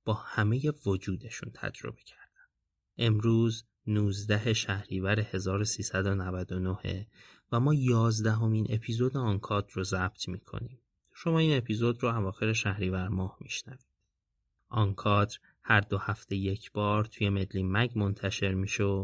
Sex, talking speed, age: male, 120 wpm, 30-49